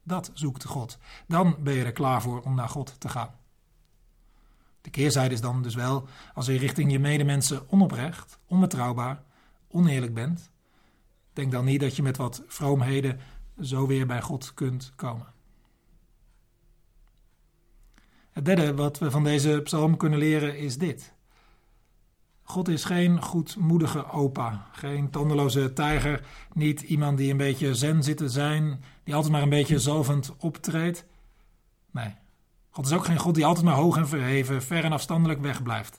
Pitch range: 130-155 Hz